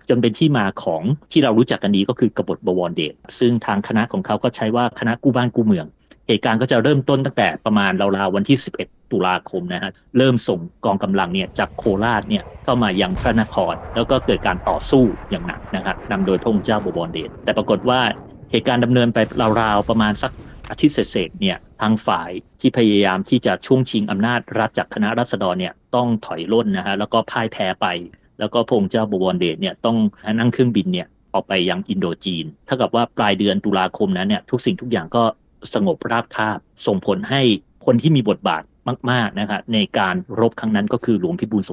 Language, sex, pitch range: Thai, male, 105-125 Hz